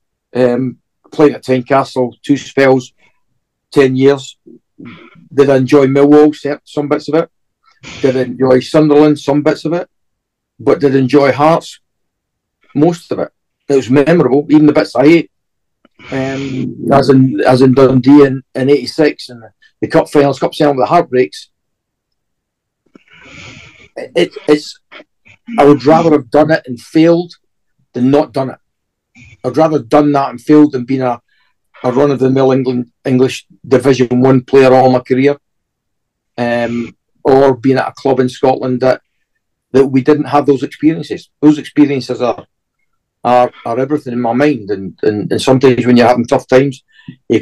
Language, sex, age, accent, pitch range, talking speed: English, male, 50-69, British, 125-150 Hz, 165 wpm